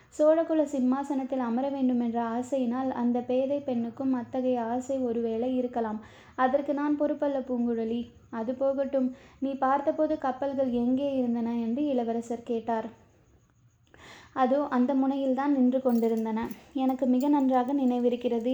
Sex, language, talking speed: female, Tamil, 115 wpm